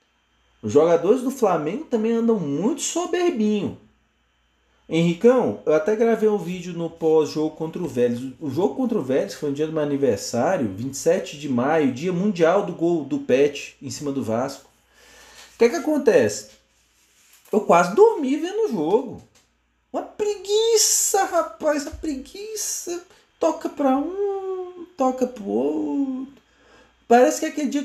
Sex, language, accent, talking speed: male, Portuguese, Brazilian, 150 wpm